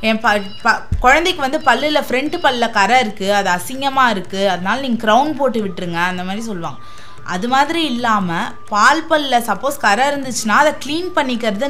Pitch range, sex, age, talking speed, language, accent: 210-300 Hz, female, 20-39, 160 wpm, Tamil, native